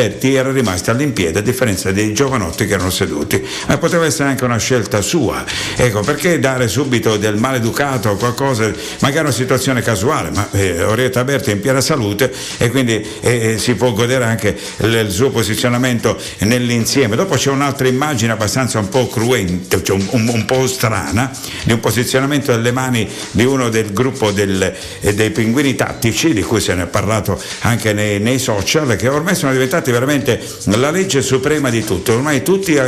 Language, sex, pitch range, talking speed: Italian, male, 105-135 Hz, 175 wpm